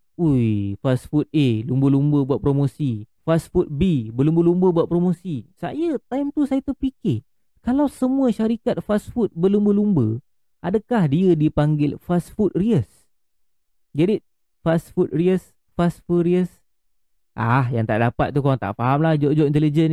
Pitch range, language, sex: 150-205 Hz, Malay, male